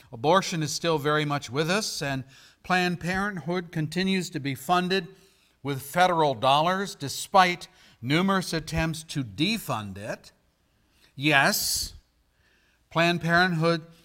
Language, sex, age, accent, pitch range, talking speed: English, male, 50-69, American, 145-190 Hz, 110 wpm